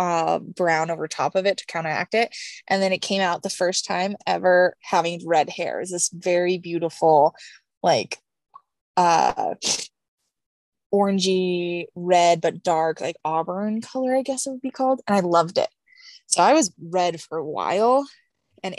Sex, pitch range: female, 170-210 Hz